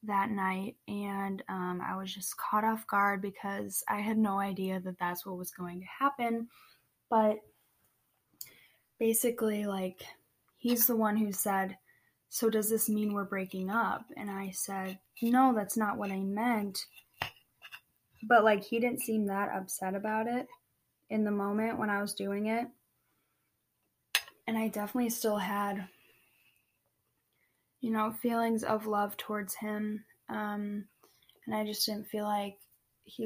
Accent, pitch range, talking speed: American, 190-215 Hz, 150 wpm